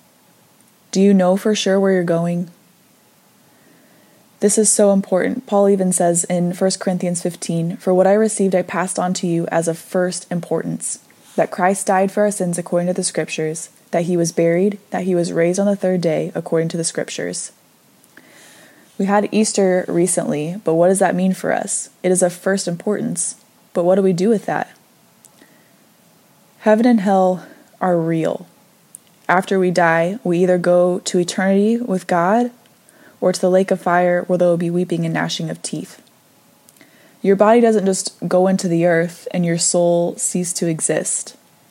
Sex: female